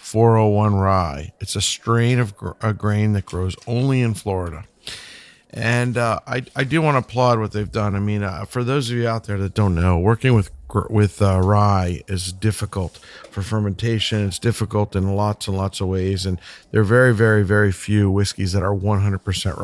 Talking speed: 195 wpm